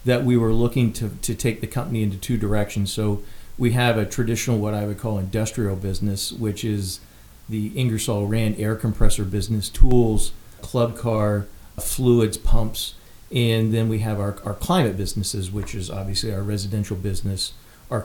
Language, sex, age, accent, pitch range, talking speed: English, male, 40-59, American, 105-120 Hz, 170 wpm